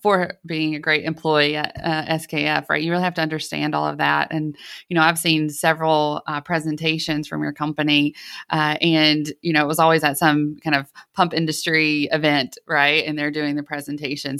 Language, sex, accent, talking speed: English, female, American, 195 wpm